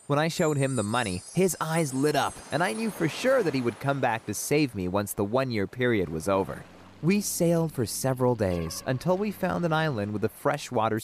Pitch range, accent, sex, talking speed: 105-170 Hz, American, male, 230 wpm